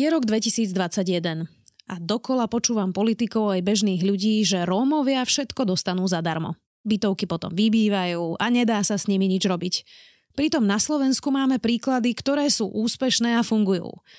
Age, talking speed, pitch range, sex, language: 20-39, 150 wpm, 185-235 Hz, female, Slovak